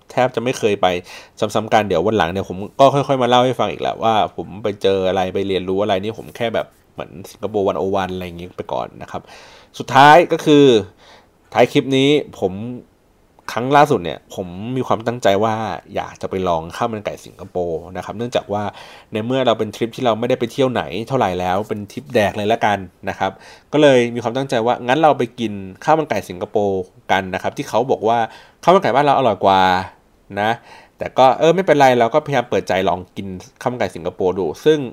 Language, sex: Thai, male